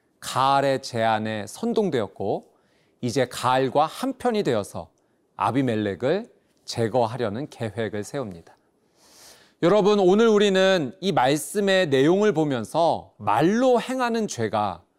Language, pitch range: Korean, 125-200 Hz